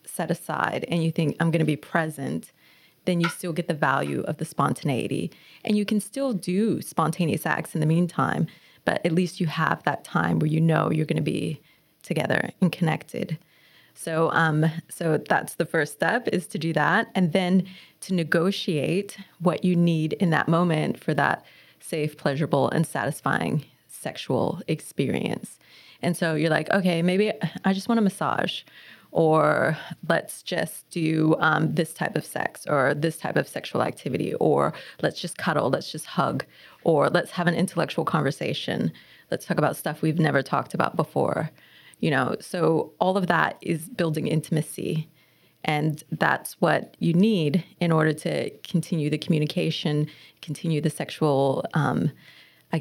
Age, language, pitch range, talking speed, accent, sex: 20-39, English, 155-180 Hz, 170 wpm, American, female